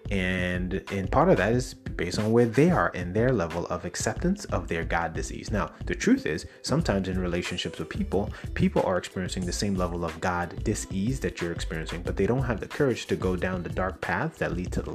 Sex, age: male, 30-49